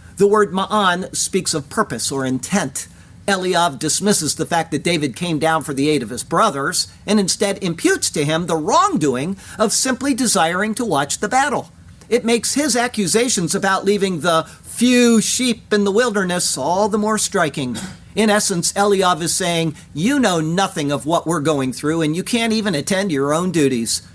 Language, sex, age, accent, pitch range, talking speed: English, male, 50-69, American, 160-215 Hz, 180 wpm